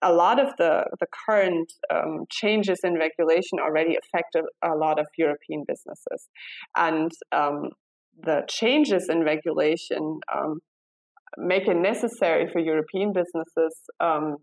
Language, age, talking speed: English, 20-39, 135 wpm